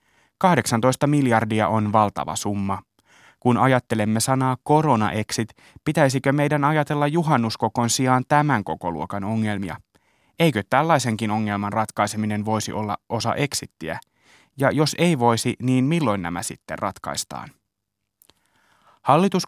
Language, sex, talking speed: Finnish, male, 110 wpm